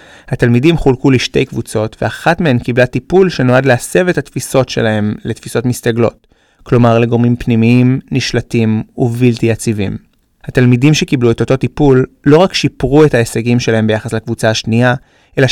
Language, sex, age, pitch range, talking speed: Hebrew, male, 20-39, 115-140 Hz, 140 wpm